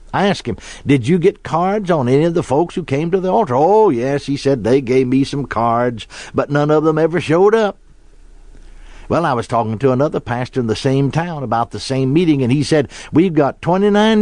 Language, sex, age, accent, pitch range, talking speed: English, male, 60-79, American, 130-200 Hz, 230 wpm